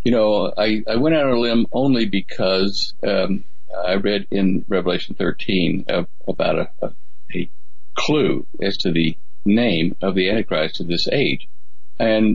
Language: English